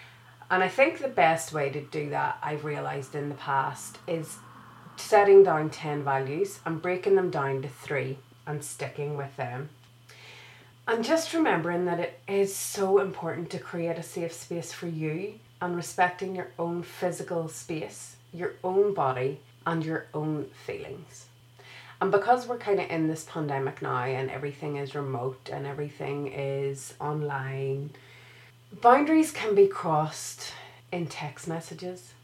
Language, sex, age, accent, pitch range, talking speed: English, female, 30-49, Irish, 135-180 Hz, 150 wpm